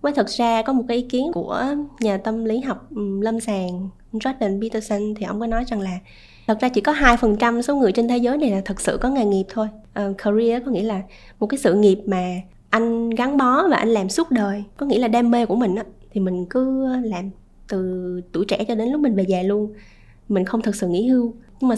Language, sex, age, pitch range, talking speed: Vietnamese, female, 10-29, 195-250 Hz, 245 wpm